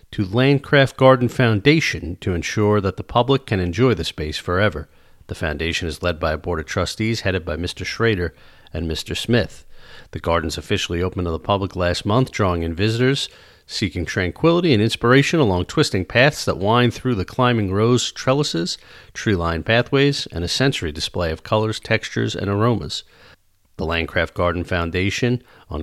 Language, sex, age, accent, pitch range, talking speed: English, male, 40-59, American, 90-125 Hz, 165 wpm